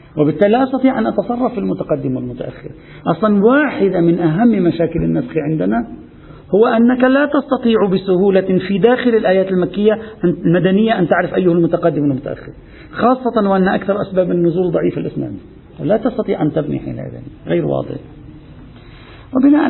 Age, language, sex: 50-69, Arabic, male